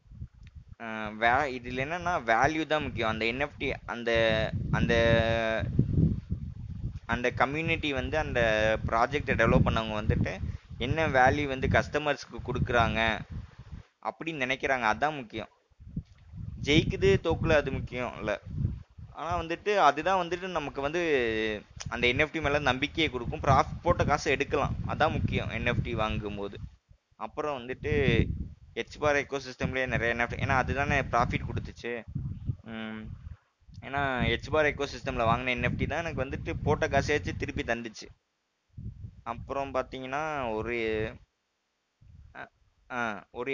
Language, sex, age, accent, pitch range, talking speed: Tamil, male, 20-39, native, 110-140 Hz, 105 wpm